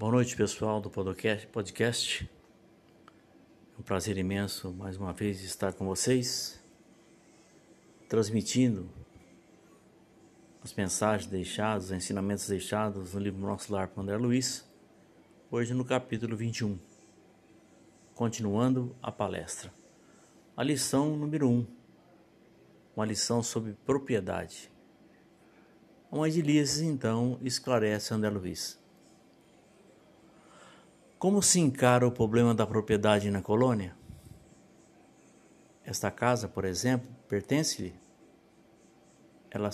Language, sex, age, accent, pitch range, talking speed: Portuguese, male, 60-79, Brazilian, 100-125 Hz, 100 wpm